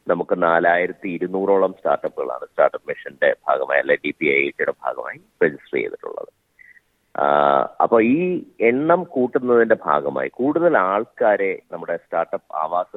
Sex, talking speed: male, 95 wpm